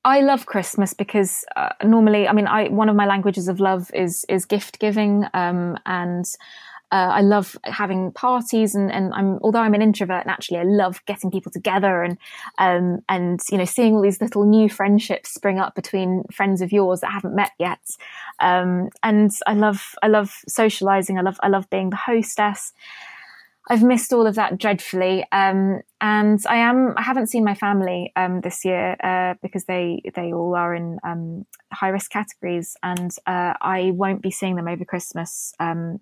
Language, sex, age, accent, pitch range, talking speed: English, female, 20-39, British, 180-210 Hz, 190 wpm